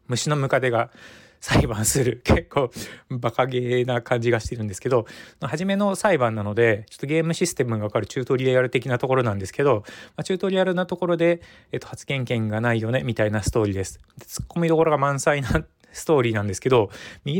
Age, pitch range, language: 20-39, 105-145 Hz, Japanese